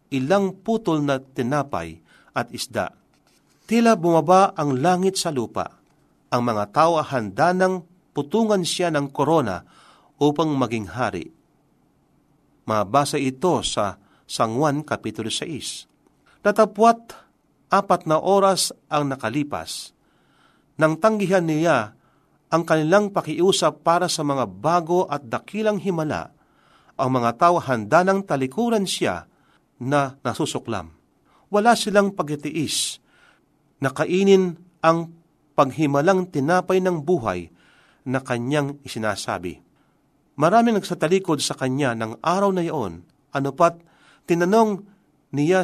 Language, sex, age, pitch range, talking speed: Filipino, male, 40-59, 135-185 Hz, 110 wpm